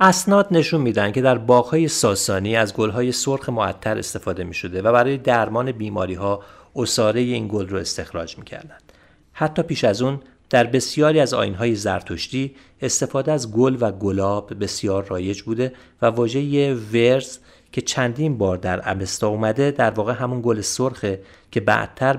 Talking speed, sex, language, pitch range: 160 wpm, male, Persian, 95-125 Hz